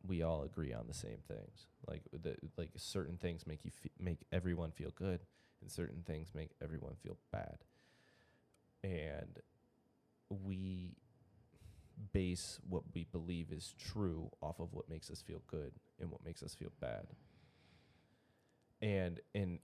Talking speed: 150 wpm